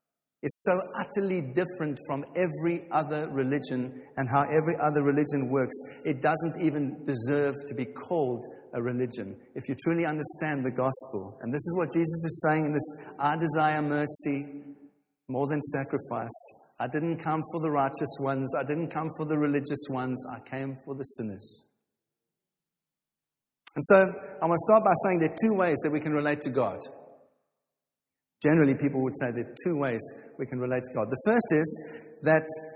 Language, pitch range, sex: English, 140-180 Hz, male